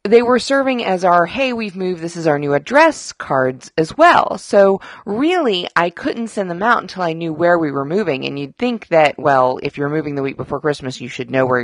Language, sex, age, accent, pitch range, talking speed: English, female, 30-49, American, 140-200 Hz, 235 wpm